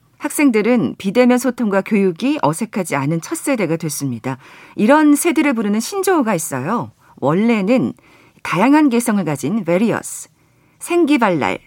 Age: 40-59